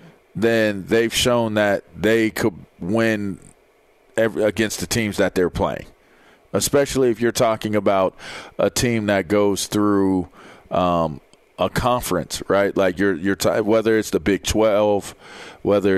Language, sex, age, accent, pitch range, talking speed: English, male, 40-59, American, 100-125 Hz, 145 wpm